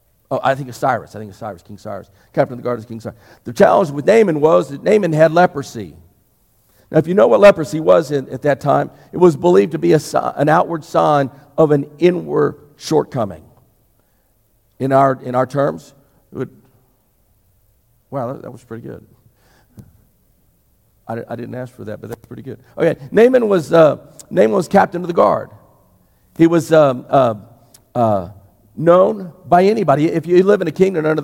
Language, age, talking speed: English, 50-69, 180 wpm